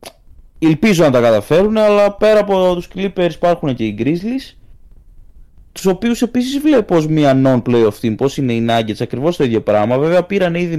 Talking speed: 185 wpm